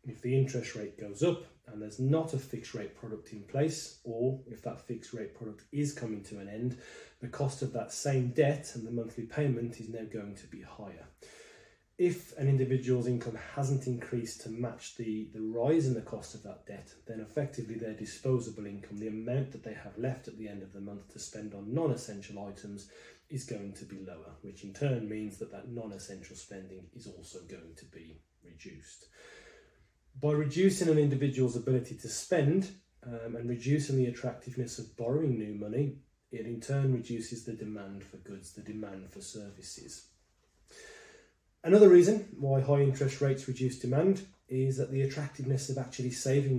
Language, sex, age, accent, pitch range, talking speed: English, male, 30-49, British, 110-135 Hz, 185 wpm